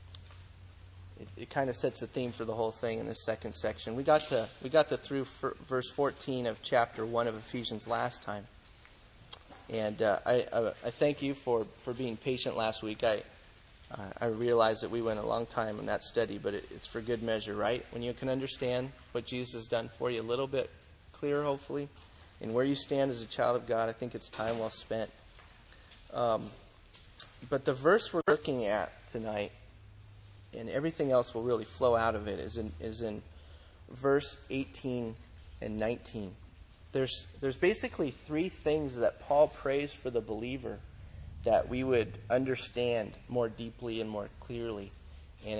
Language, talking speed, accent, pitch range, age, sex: English, 185 wpm, American, 100-125 Hz, 30-49, male